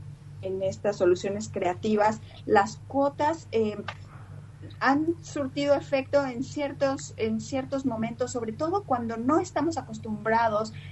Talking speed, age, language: 110 wpm, 30-49, Spanish